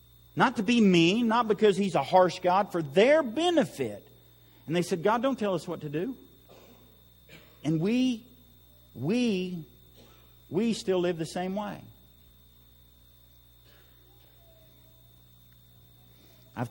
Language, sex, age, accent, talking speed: English, male, 50-69, American, 120 wpm